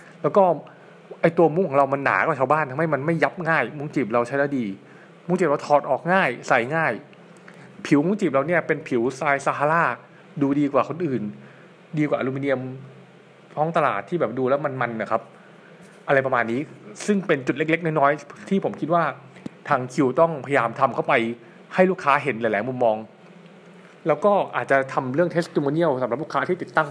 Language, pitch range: Thai, 135-175 Hz